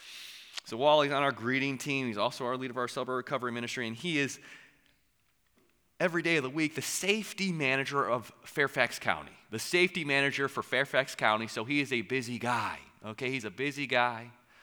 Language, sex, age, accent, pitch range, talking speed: English, male, 30-49, American, 115-140 Hz, 190 wpm